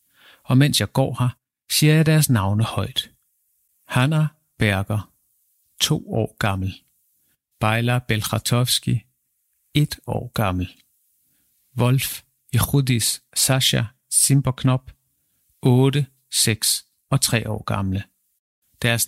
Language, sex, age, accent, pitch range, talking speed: Danish, male, 50-69, native, 115-135 Hz, 100 wpm